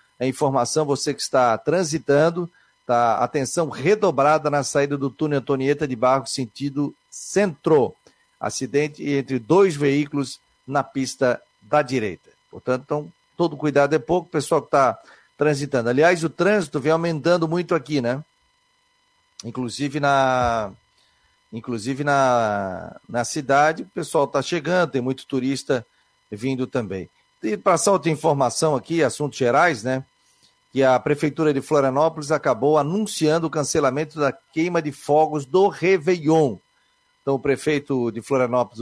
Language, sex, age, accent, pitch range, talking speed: Portuguese, male, 40-59, Brazilian, 130-160 Hz, 135 wpm